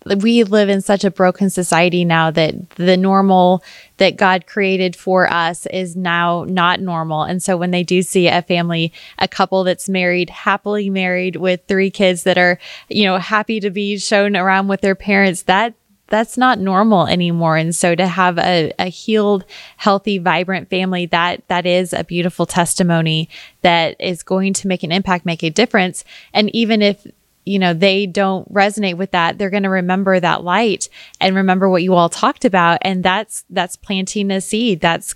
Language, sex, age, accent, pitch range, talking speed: English, female, 20-39, American, 180-200 Hz, 185 wpm